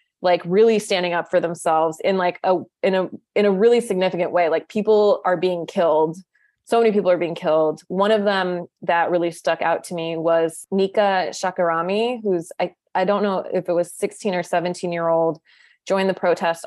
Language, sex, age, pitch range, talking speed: English, female, 20-39, 165-185 Hz, 190 wpm